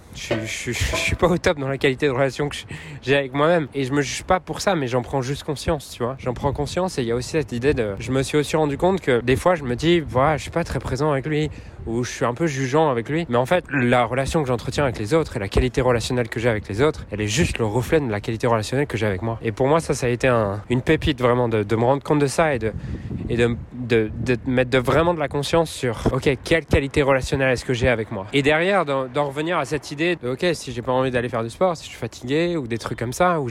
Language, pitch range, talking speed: French, 120-150 Hz, 295 wpm